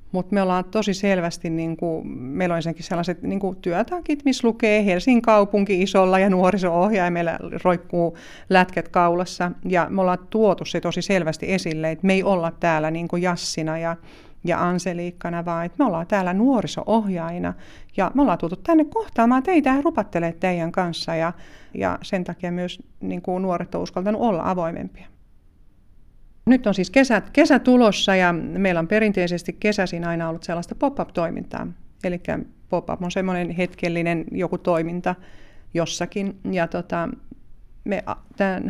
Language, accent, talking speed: Finnish, native, 155 wpm